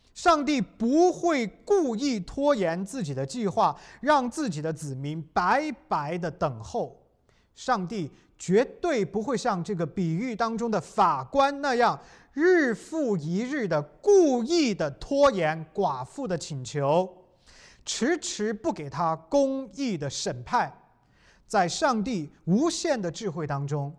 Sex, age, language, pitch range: male, 30-49, English, 150-240 Hz